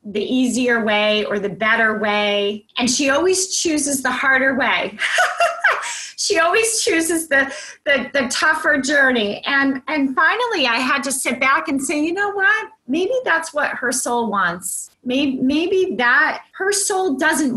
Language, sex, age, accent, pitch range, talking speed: English, female, 30-49, American, 220-285 Hz, 160 wpm